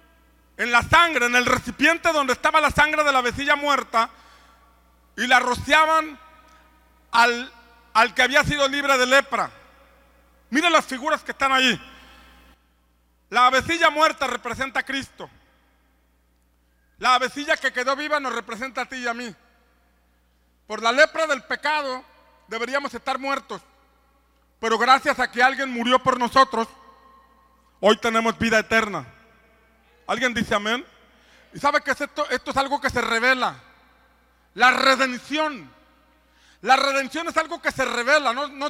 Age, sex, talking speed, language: 40-59, male, 145 wpm, Spanish